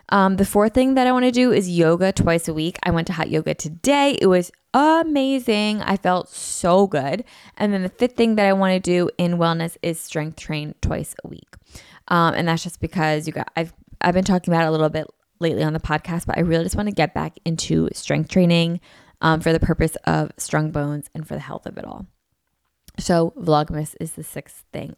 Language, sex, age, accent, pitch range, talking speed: English, female, 20-39, American, 160-205 Hz, 230 wpm